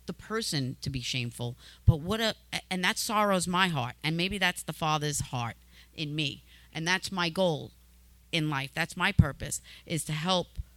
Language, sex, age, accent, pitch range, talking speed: English, female, 40-59, American, 145-245 Hz, 185 wpm